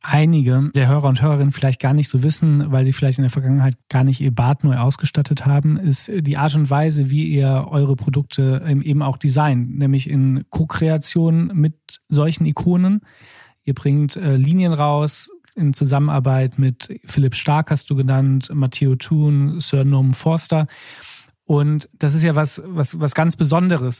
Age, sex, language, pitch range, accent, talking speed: 40-59, male, German, 135-155 Hz, German, 170 wpm